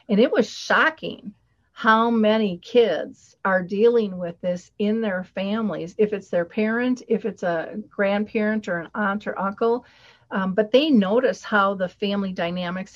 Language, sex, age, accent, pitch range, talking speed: English, female, 40-59, American, 195-235 Hz, 160 wpm